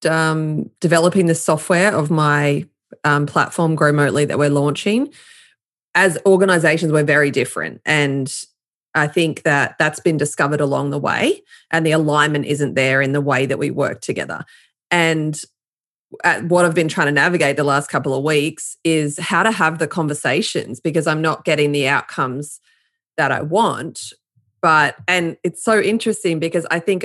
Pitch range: 150-185 Hz